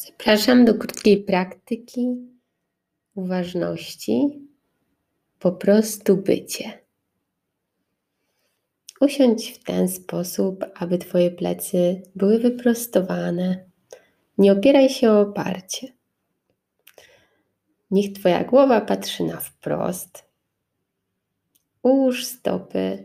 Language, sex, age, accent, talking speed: Polish, female, 20-39, native, 80 wpm